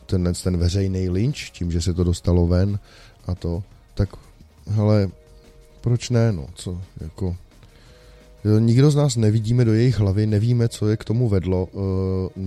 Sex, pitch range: male, 80-100 Hz